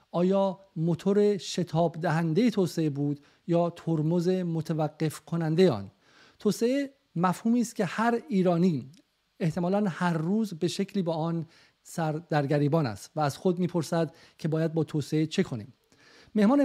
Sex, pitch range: male, 160-210 Hz